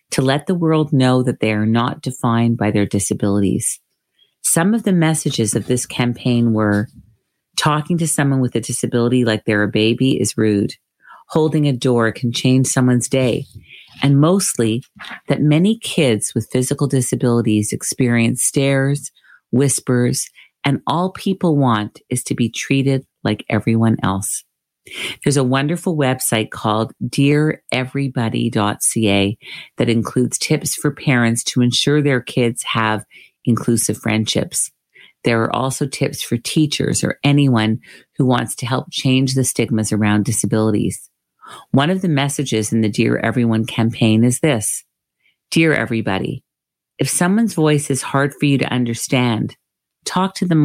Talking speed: 145 wpm